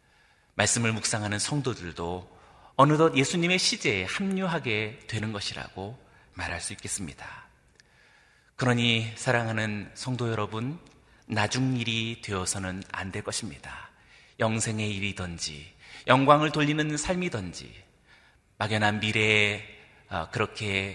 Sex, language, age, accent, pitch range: male, Korean, 30-49, native, 100-135 Hz